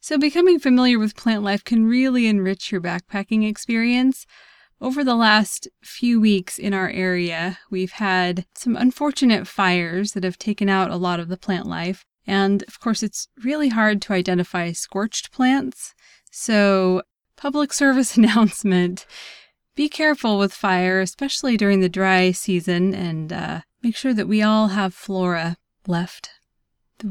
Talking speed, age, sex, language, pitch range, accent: 155 wpm, 20-39, female, English, 190-240 Hz, American